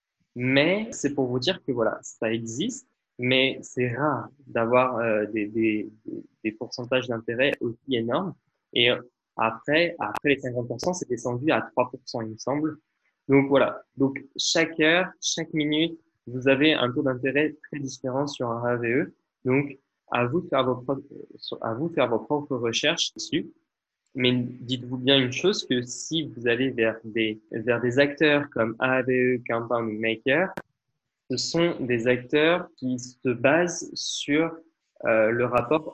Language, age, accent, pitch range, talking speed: French, 20-39, French, 120-150 Hz, 155 wpm